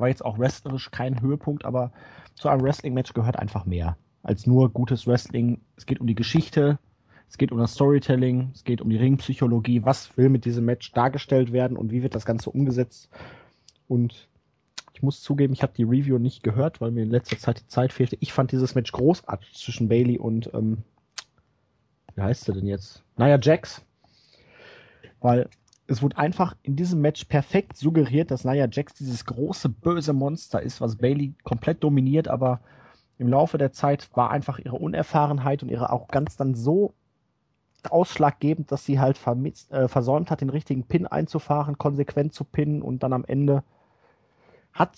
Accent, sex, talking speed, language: German, male, 180 wpm, German